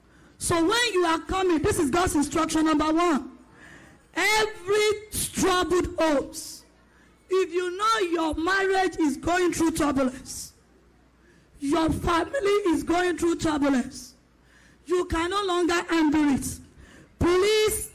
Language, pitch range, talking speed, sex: English, 305-370 Hz, 120 wpm, female